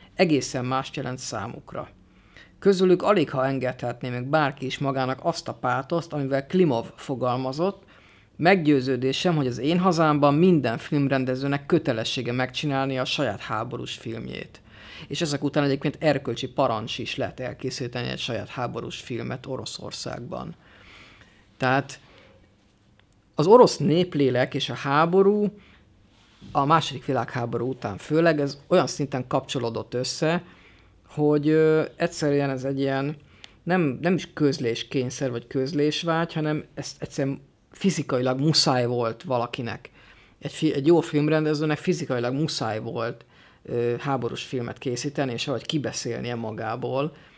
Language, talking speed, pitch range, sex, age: Hungarian, 120 wpm, 125-155 Hz, female, 50-69